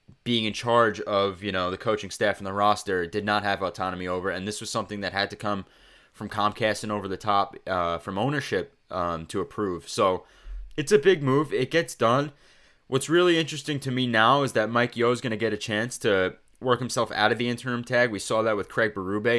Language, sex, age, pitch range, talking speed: English, male, 20-39, 100-120 Hz, 230 wpm